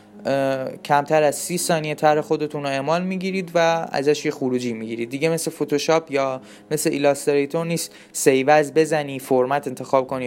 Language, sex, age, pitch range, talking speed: Persian, male, 20-39, 140-185 Hz, 170 wpm